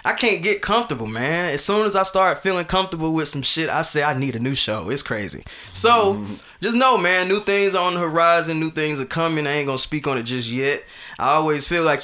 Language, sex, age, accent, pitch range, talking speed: English, male, 20-39, American, 135-185 Hz, 255 wpm